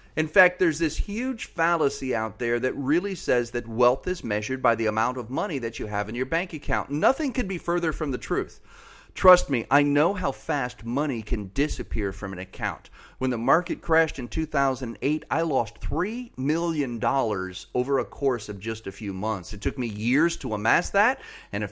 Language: English